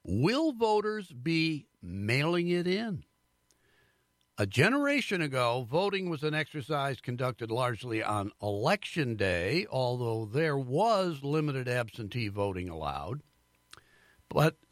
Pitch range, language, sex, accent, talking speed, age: 125-170 Hz, English, male, American, 105 wpm, 60-79